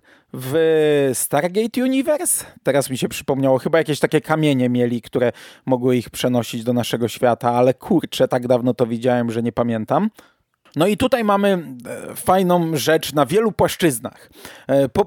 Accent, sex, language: native, male, Polish